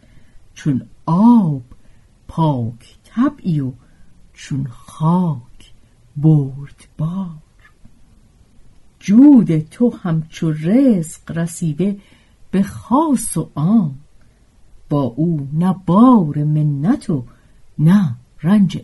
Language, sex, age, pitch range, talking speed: Persian, female, 50-69, 130-210 Hz, 85 wpm